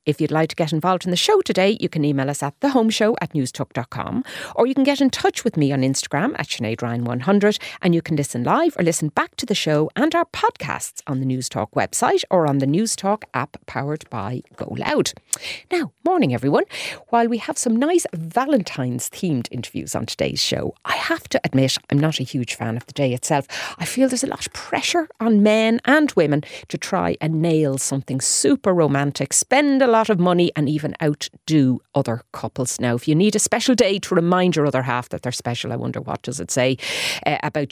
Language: English